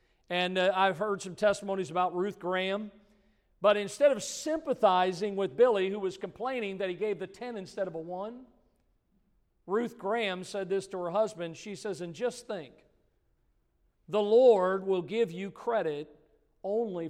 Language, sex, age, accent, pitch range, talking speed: English, male, 50-69, American, 170-200 Hz, 160 wpm